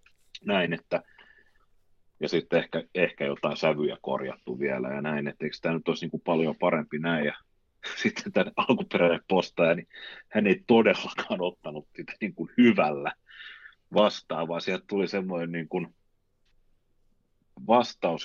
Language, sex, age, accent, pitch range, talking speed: Finnish, male, 30-49, native, 80-105 Hz, 130 wpm